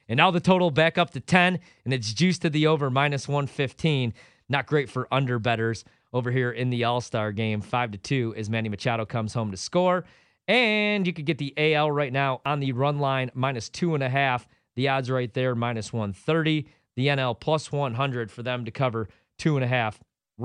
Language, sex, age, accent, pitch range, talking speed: English, male, 30-49, American, 110-140 Hz, 190 wpm